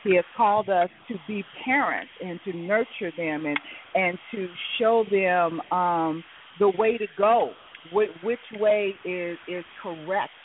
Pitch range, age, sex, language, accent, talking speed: 175-230 Hz, 40-59, female, English, American, 150 wpm